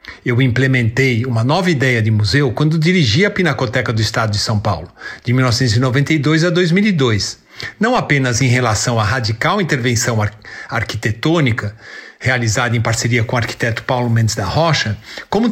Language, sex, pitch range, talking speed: Portuguese, male, 115-155 Hz, 150 wpm